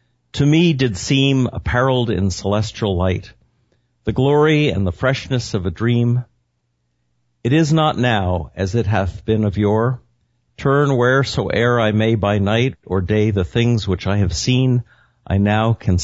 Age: 50-69